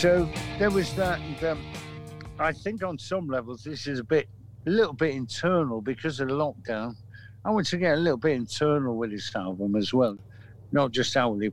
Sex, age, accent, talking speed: male, 60-79, British, 205 wpm